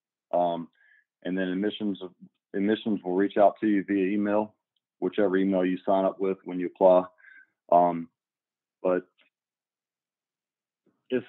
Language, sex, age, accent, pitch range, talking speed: English, male, 40-59, American, 95-115 Hz, 130 wpm